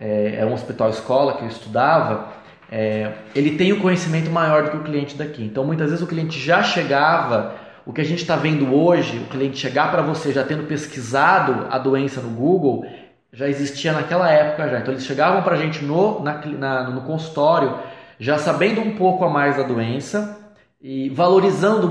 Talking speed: 185 wpm